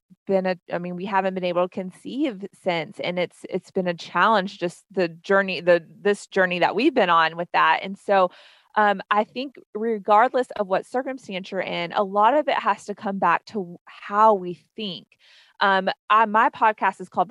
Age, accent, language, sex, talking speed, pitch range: 30-49, American, English, female, 200 wpm, 180-210 Hz